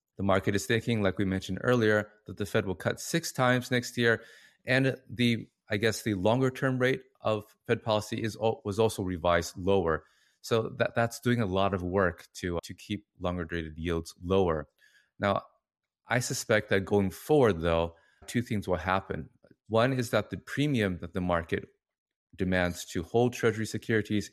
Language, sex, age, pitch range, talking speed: English, male, 20-39, 85-110 Hz, 175 wpm